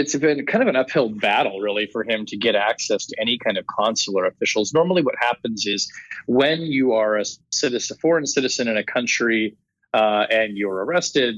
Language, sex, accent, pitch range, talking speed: English, male, American, 105-135 Hz, 200 wpm